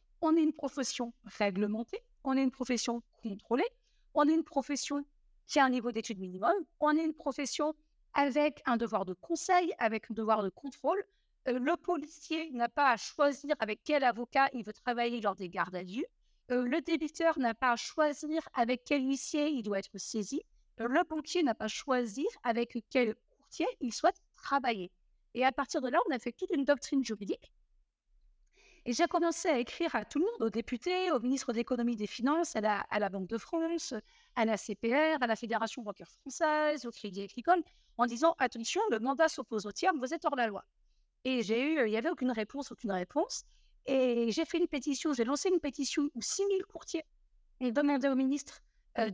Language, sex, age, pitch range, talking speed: French, female, 50-69, 230-315 Hz, 205 wpm